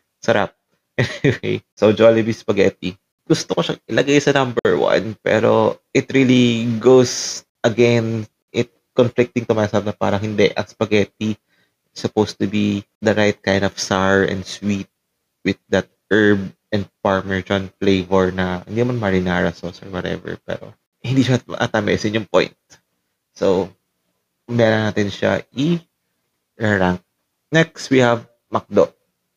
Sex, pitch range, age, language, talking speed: male, 95-120 Hz, 20-39, English, 140 wpm